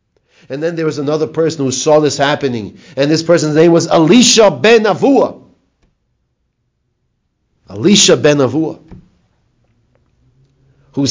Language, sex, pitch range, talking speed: English, male, 125-175 Hz, 125 wpm